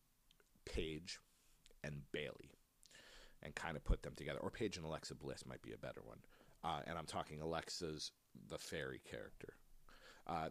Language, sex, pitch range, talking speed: English, male, 75-100 Hz, 160 wpm